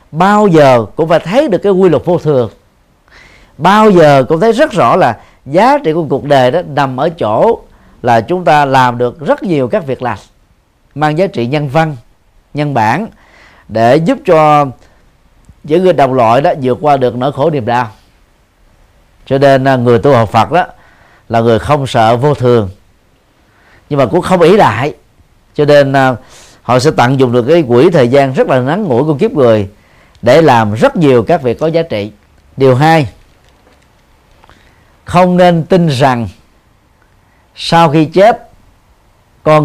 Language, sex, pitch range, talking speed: Vietnamese, male, 110-160 Hz, 175 wpm